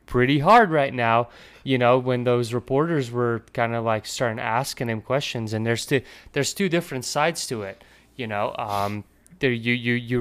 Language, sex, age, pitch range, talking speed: English, male, 20-39, 115-140 Hz, 195 wpm